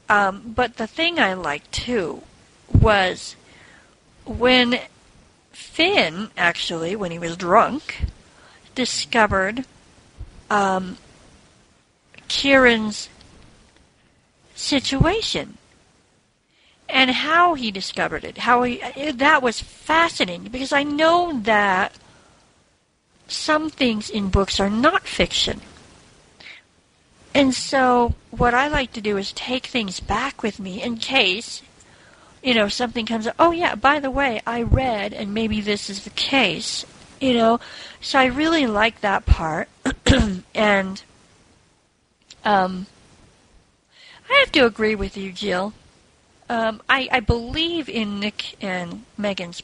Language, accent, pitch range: English, American, 200-265 Hz